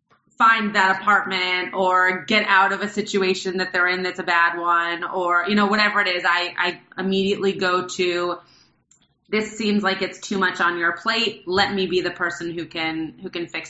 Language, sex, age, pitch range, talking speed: English, female, 30-49, 190-235 Hz, 200 wpm